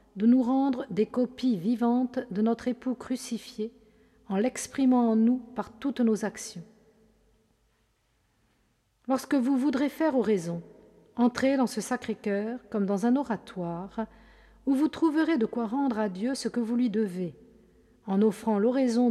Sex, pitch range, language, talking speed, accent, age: female, 210-250 Hz, French, 150 wpm, French, 50-69